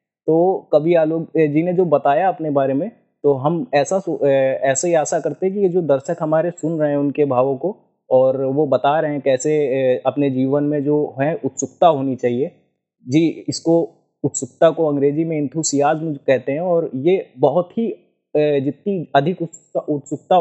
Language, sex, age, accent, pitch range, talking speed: Hindi, male, 20-39, native, 140-175 Hz, 175 wpm